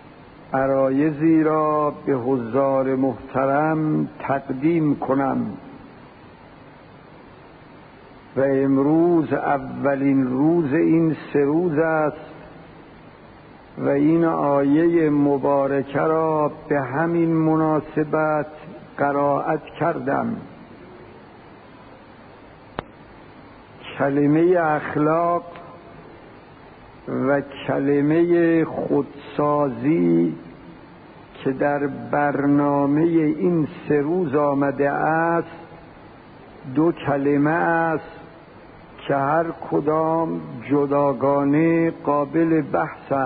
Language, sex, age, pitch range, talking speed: Persian, male, 60-79, 140-165 Hz, 60 wpm